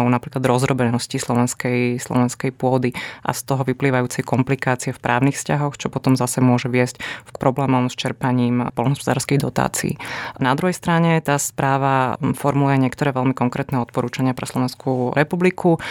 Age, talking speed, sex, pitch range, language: 30-49, 140 wpm, female, 130-145 Hz, Slovak